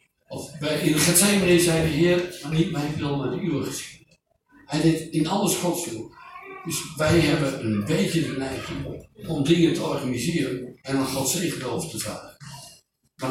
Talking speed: 180 wpm